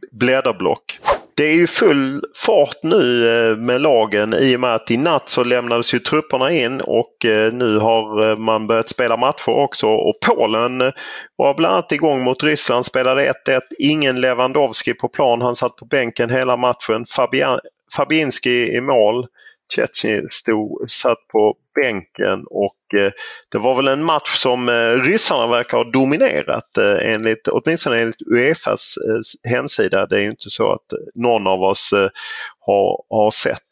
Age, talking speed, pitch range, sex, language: 30-49, 150 wpm, 105-130 Hz, male, English